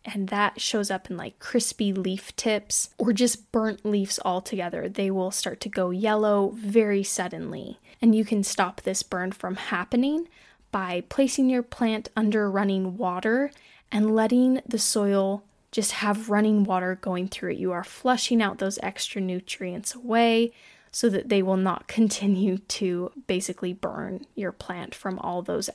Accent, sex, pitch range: American, female, 195-235 Hz